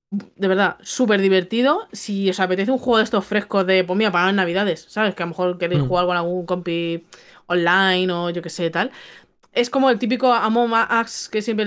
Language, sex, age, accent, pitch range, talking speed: Spanish, female, 20-39, Spanish, 190-235 Hz, 210 wpm